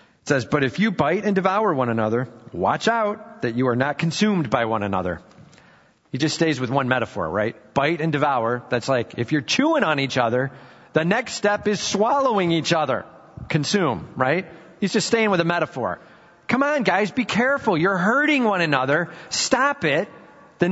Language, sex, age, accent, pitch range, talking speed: English, male, 40-59, American, 115-180 Hz, 185 wpm